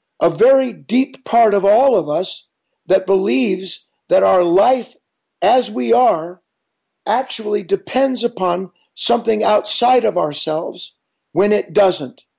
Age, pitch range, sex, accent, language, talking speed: 50-69, 180-230 Hz, male, American, English, 125 wpm